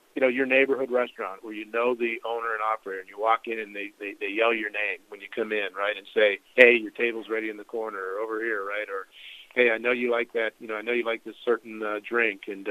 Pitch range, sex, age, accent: 105-125 Hz, male, 40-59, American